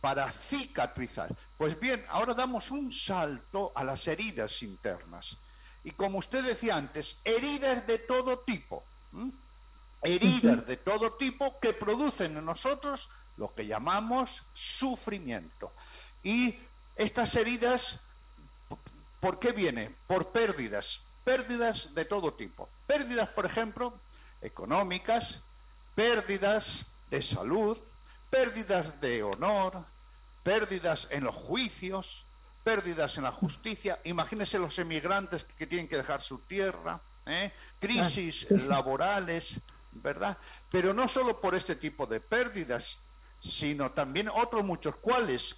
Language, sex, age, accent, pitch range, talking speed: Spanish, male, 60-79, Spanish, 170-245 Hz, 115 wpm